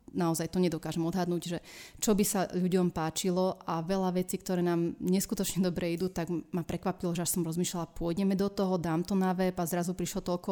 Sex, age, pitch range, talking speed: female, 30-49, 165-180 Hz, 205 wpm